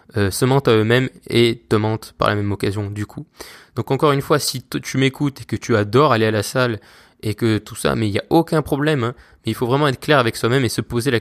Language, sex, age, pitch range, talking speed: French, male, 20-39, 110-130 Hz, 285 wpm